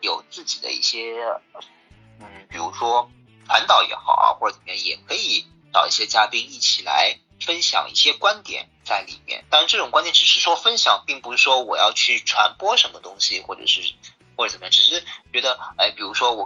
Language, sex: Chinese, male